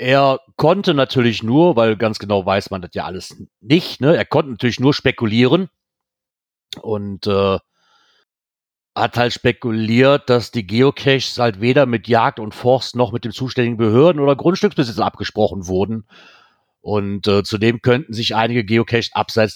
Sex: male